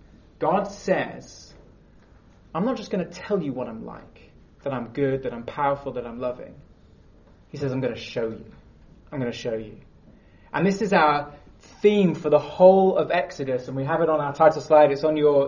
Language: English